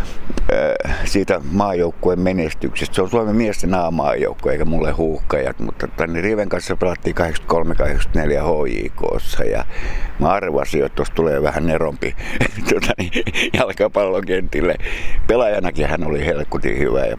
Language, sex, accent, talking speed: Finnish, male, native, 130 wpm